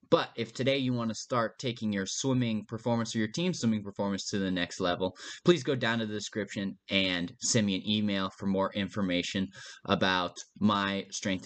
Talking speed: 190 wpm